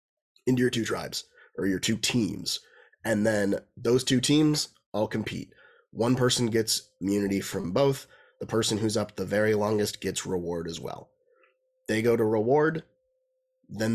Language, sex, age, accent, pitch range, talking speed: English, male, 30-49, American, 105-130 Hz, 160 wpm